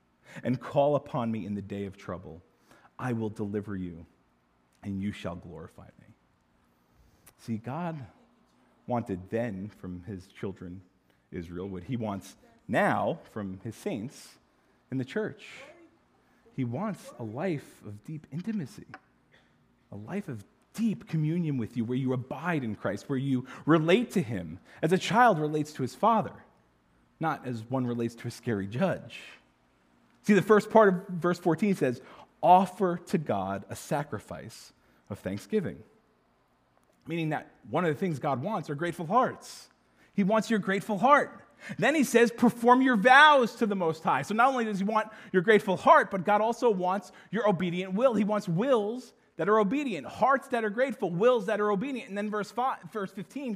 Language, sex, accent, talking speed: English, male, American, 170 wpm